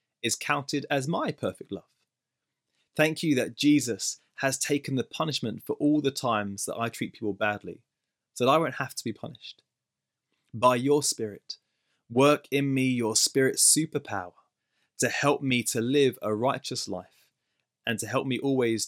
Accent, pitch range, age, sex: British, 110-140 Hz, 20-39, male